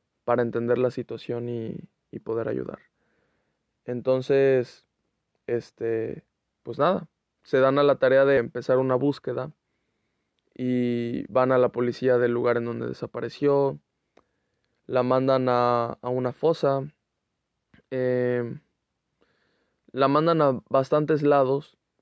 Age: 20-39